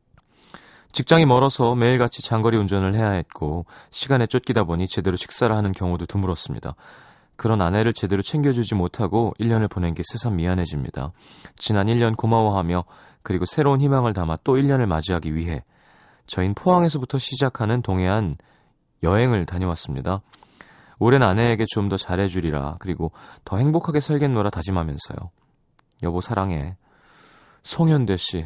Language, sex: Korean, male